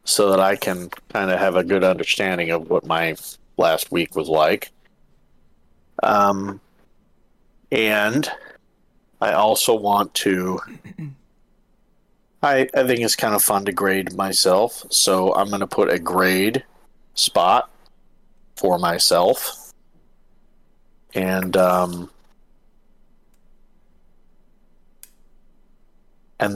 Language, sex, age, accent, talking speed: English, male, 40-59, American, 105 wpm